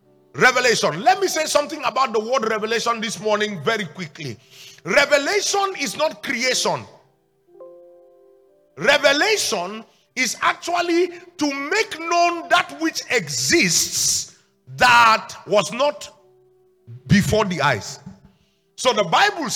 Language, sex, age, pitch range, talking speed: English, male, 50-69, 190-315 Hz, 105 wpm